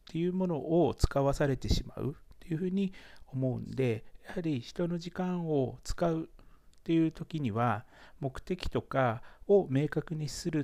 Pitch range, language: 110-165 Hz, Japanese